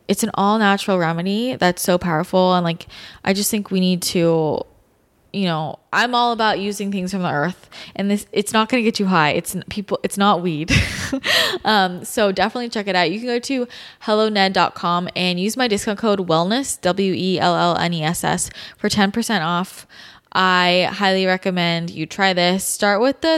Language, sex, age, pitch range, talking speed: English, female, 20-39, 175-205 Hz, 200 wpm